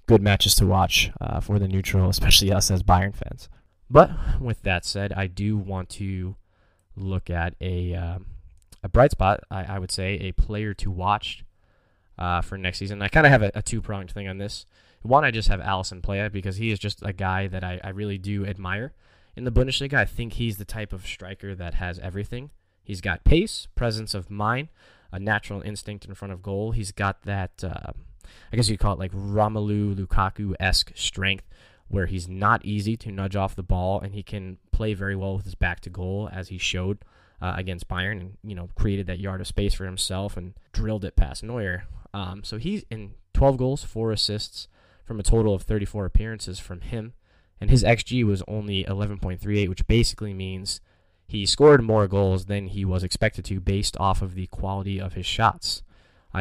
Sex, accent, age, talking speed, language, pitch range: male, American, 10-29, 200 wpm, English, 95-105 Hz